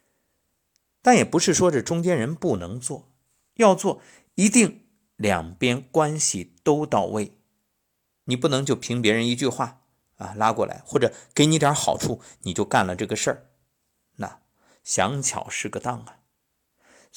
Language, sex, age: Chinese, male, 50-69